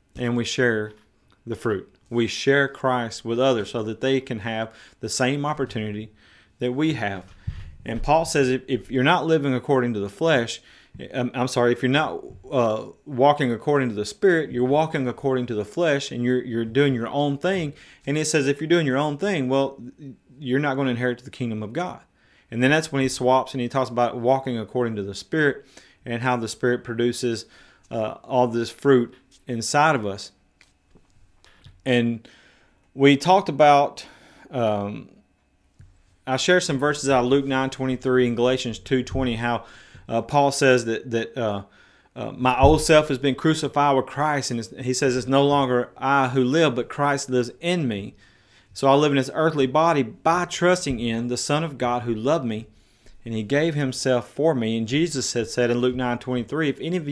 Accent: American